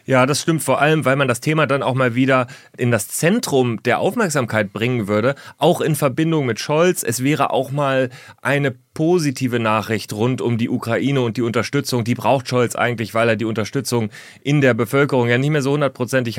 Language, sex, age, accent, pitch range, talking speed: German, male, 30-49, German, 110-135 Hz, 200 wpm